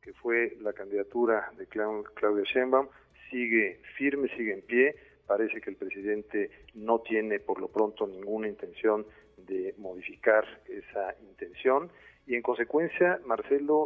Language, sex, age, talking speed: Spanish, male, 50-69, 135 wpm